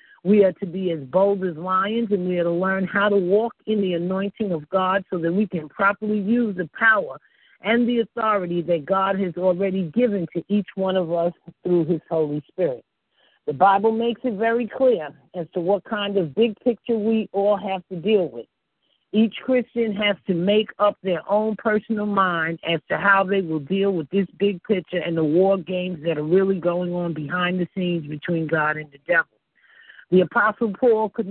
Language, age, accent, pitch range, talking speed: English, 50-69, American, 175-215 Hz, 205 wpm